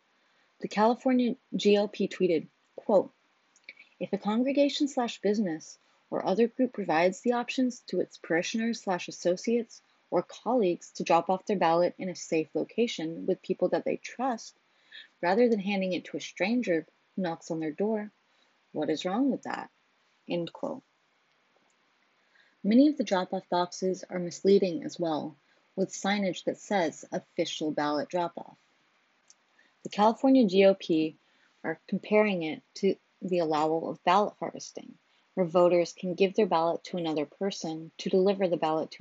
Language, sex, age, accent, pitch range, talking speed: English, female, 30-49, American, 170-225 Hz, 150 wpm